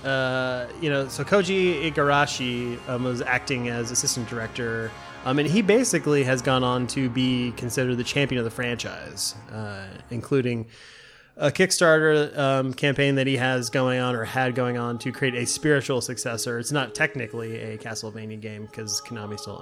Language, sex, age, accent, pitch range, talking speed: English, male, 20-39, American, 120-145 Hz, 170 wpm